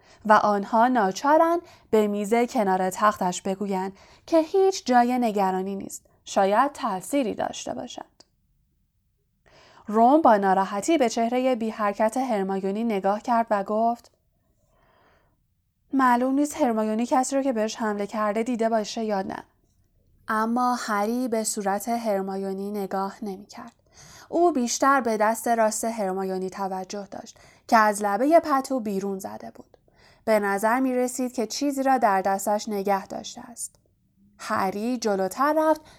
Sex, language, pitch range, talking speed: female, Persian, 195-245 Hz, 135 wpm